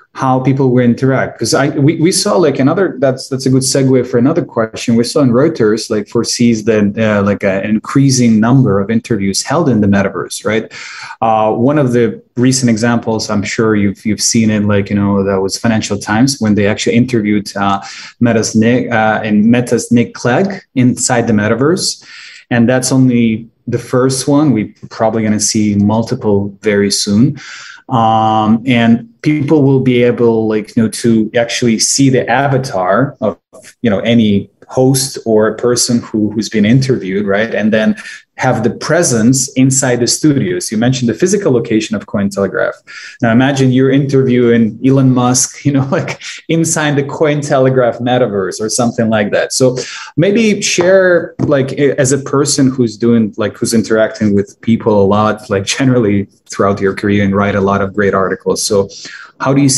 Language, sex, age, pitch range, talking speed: English, male, 20-39, 105-130 Hz, 180 wpm